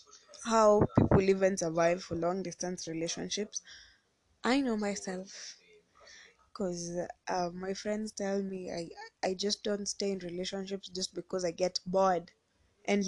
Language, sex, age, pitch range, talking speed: English, female, 20-39, 185-240 Hz, 135 wpm